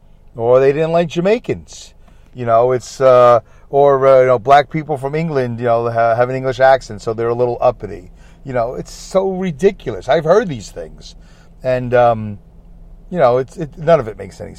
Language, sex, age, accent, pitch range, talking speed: English, male, 40-59, American, 110-145 Hz, 200 wpm